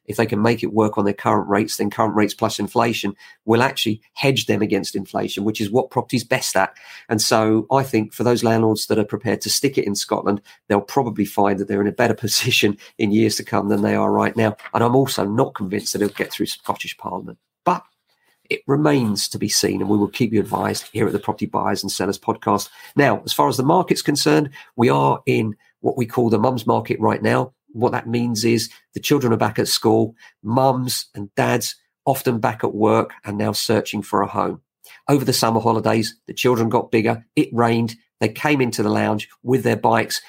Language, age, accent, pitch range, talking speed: English, 40-59, British, 105-125 Hz, 225 wpm